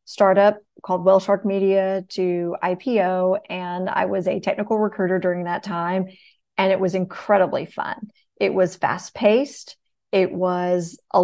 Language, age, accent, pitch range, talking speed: English, 30-49, American, 185-205 Hz, 150 wpm